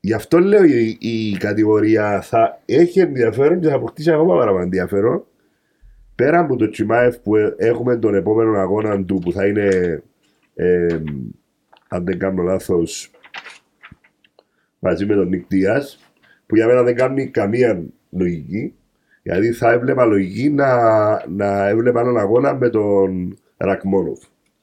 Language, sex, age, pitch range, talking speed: Greek, male, 50-69, 100-140 Hz, 140 wpm